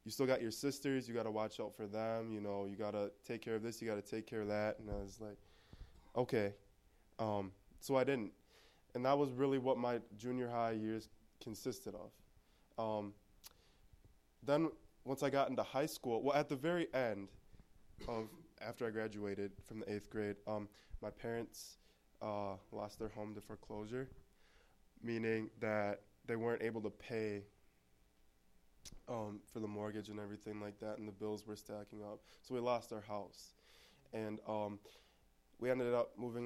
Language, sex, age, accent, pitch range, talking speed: English, male, 20-39, American, 100-120 Hz, 180 wpm